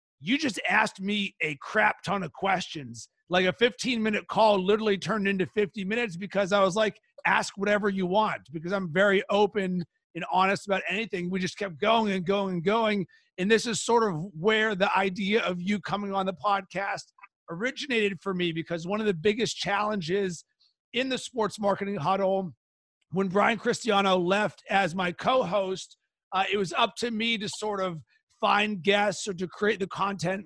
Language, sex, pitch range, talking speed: English, male, 185-215 Hz, 180 wpm